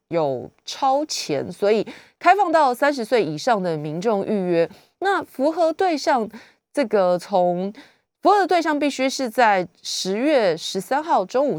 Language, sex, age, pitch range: Chinese, female, 30-49, 170-240 Hz